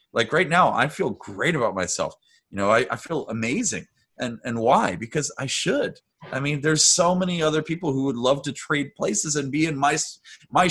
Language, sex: English, male